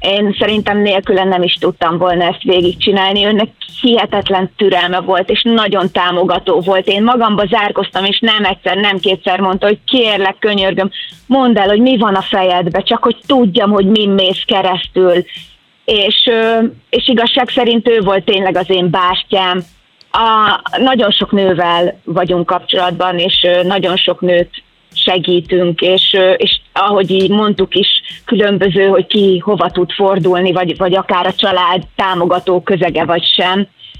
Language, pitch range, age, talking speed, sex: Hungarian, 180-205 Hz, 30-49, 150 wpm, female